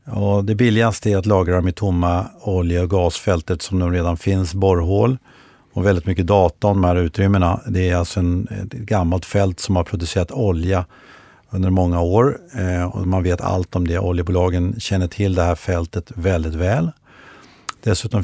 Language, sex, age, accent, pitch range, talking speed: Swedish, male, 50-69, native, 90-110 Hz, 175 wpm